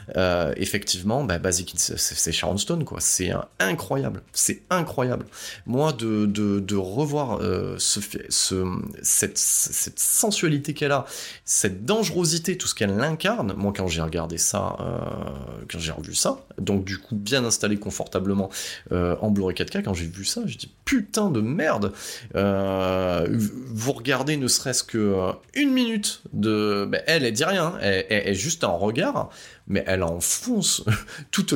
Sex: male